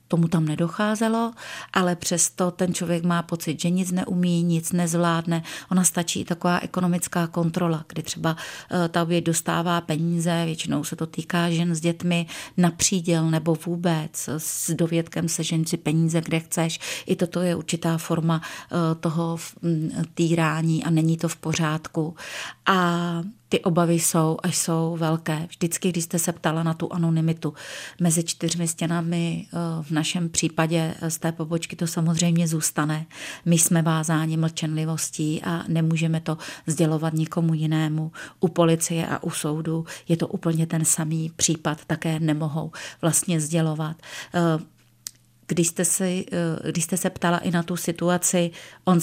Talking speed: 140 wpm